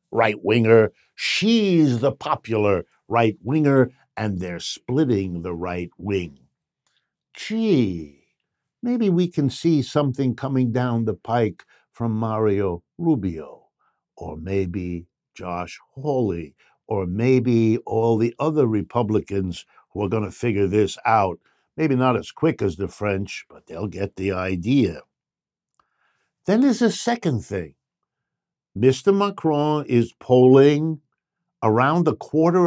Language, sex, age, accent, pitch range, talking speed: English, male, 60-79, American, 100-160 Hz, 120 wpm